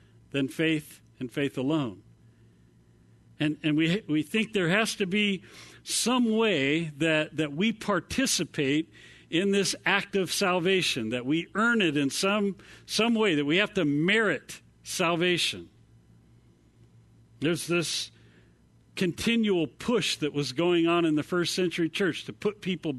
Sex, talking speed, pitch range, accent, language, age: male, 145 wpm, 140-195 Hz, American, English, 50-69